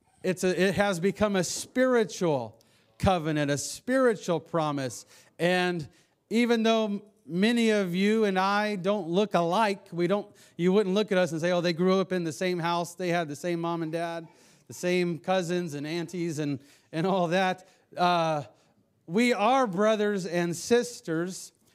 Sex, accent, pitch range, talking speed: male, American, 150-200 Hz, 170 wpm